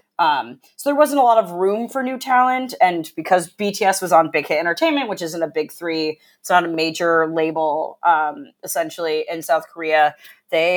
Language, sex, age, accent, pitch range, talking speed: English, female, 30-49, American, 165-225 Hz, 195 wpm